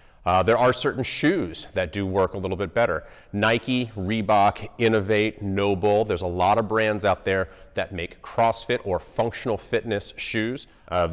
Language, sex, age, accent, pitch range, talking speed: English, male, 30-49, American, 90-110 Hz, 165 wpm